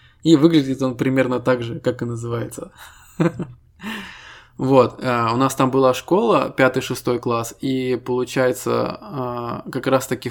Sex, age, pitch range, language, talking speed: male, 20-39, 120-140 Hz, Russian, 140 wpm